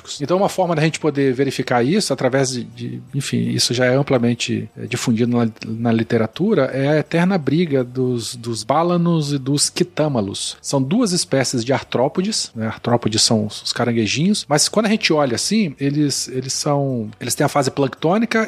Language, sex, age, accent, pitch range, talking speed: Portuguese, male, 40-59, Brazilian, 125-170 Hz, 170 wpm